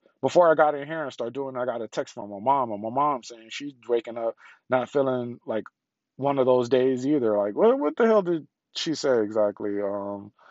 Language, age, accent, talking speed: English, 20-39, American, 230 wpm